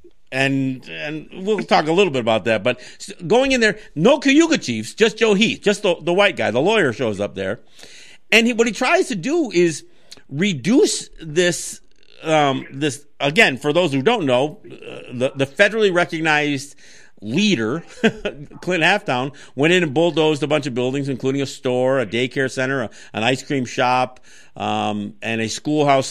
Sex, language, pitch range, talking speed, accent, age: male, English, 125-180 Hz, 180 wpm, American, 50-69